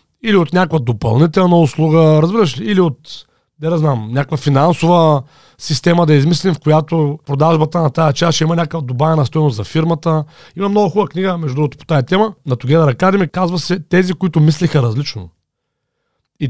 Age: 40-59